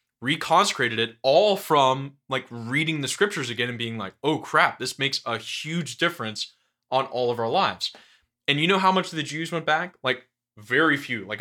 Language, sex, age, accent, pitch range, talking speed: English, male, 20-39, American, 110-140 Hz, 200 wpm